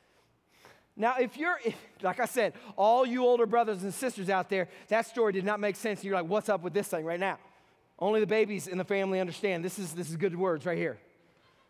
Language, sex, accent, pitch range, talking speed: English, male, American, 210-290 Hz, 230 wpm